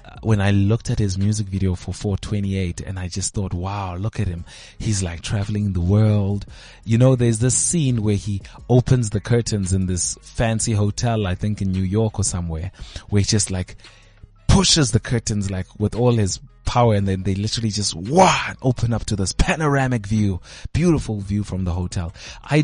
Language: English